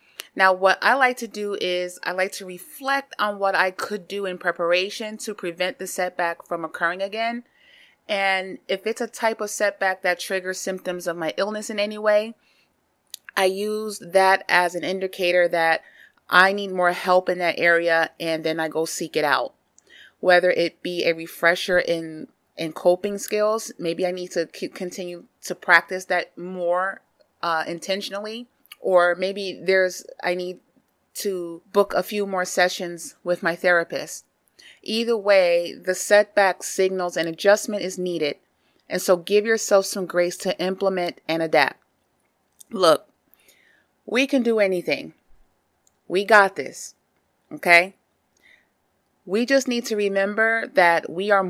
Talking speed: 155 wpm